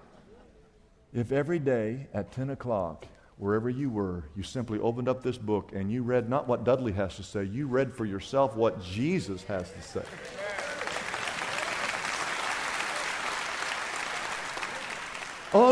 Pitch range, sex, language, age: 100-135 Hz, male, English, 50-69